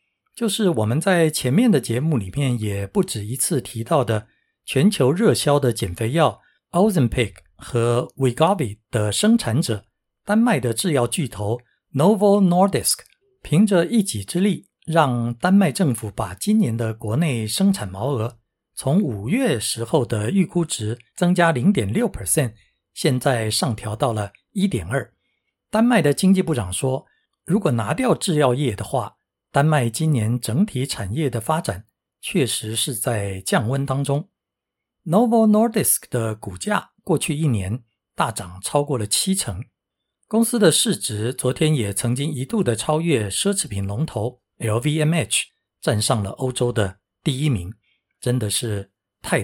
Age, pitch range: 60-79, 110-165 Hz